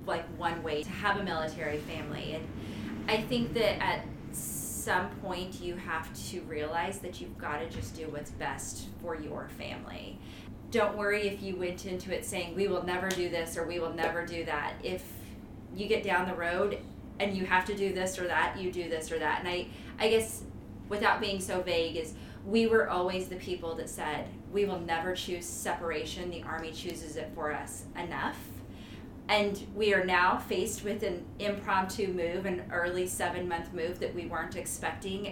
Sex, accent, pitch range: female, American, 175-215 Hz